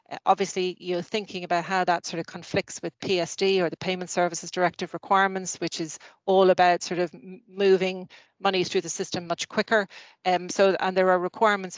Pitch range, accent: 175-195 Hz, Irish